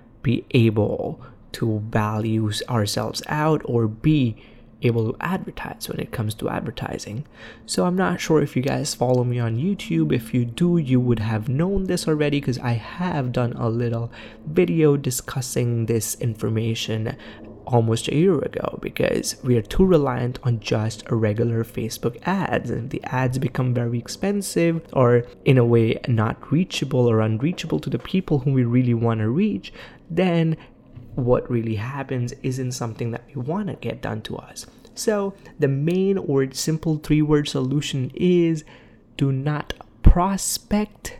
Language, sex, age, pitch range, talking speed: English, male, 20-39, 120-155 Hz, 160 wpm